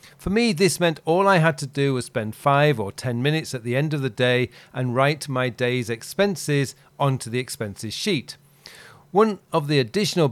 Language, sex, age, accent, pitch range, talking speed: English, male, 40-59, British, 120-155 Hz, 200 wpm